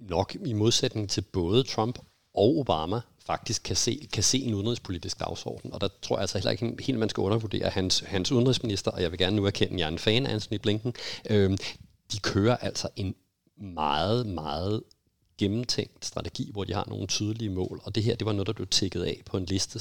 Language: Danish